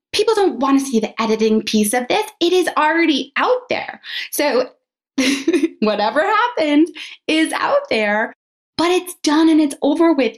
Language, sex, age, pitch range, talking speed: English, female, 20-39, 250-315 Hz, 160 wpm